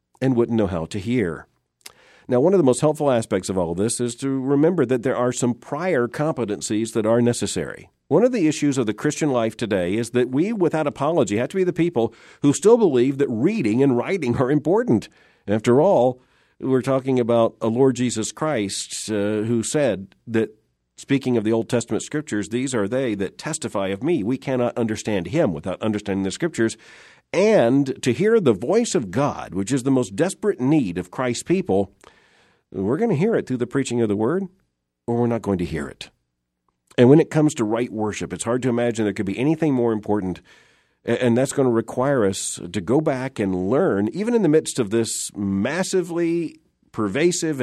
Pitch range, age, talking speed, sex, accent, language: 105-140 Hz, 50-69, 200 wpm, male, American, English